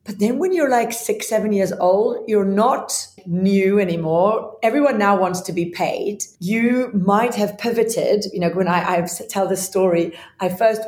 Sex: female